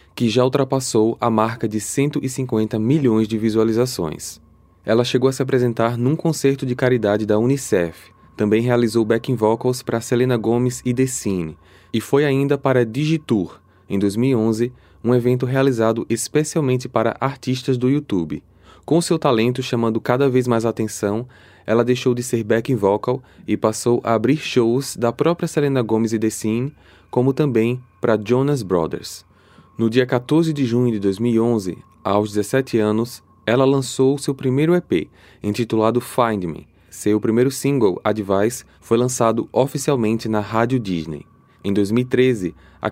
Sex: male